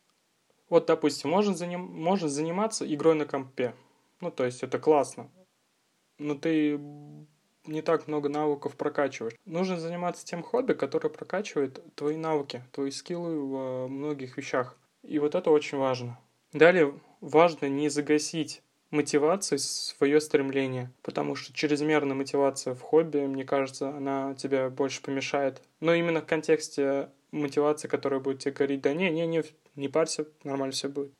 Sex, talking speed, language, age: male, 140 wpm, Russian, 20-39